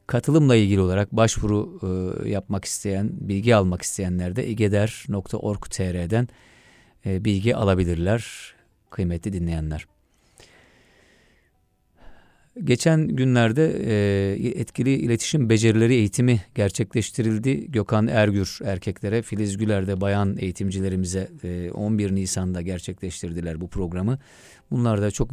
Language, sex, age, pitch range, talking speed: Turkish, male, 40-59, 95-115 Hz, 90 wpm